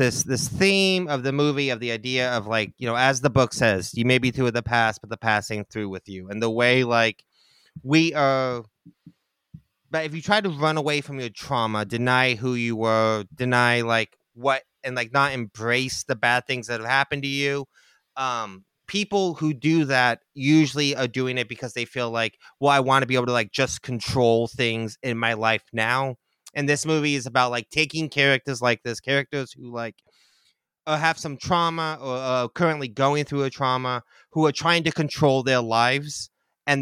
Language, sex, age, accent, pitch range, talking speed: English, male, 30-49, American, 115-145 Hz, 200 wpm